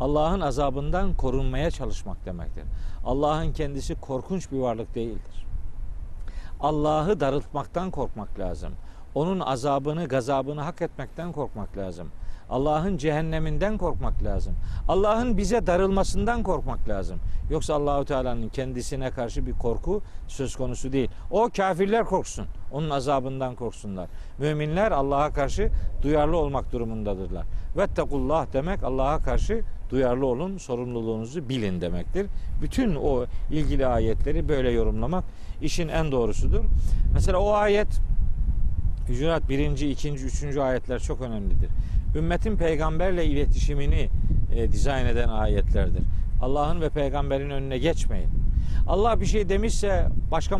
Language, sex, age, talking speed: Turkish, male, 50-69, 115 wpm